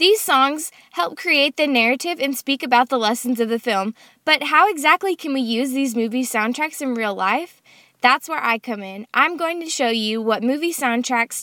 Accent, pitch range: American, 235-305 Hz